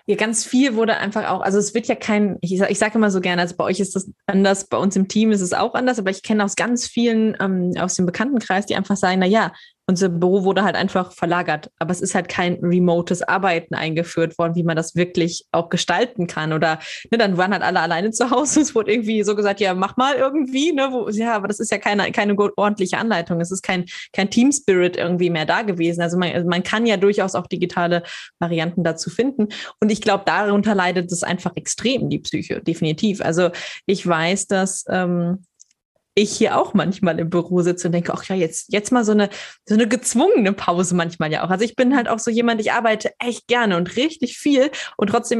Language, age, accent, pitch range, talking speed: German, 20-39, German, 180-225 Hz, 220 wpm